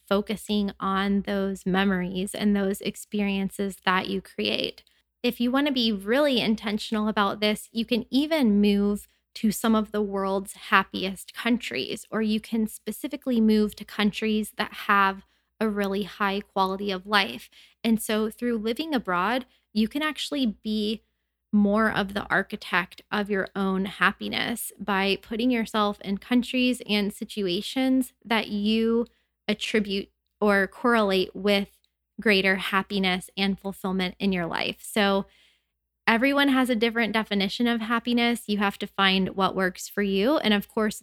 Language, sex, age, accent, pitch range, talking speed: English, female, 20-39, American, 195-225 Hz, 150 wpm